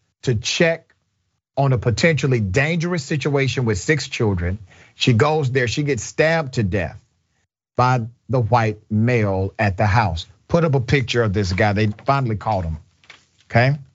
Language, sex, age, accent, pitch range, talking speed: English, male, 40-59, American, 110-140 Hz, 160 wpm